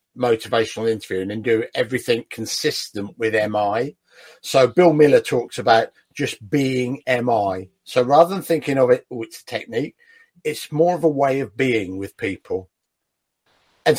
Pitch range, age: 115-160 Hz, 50-69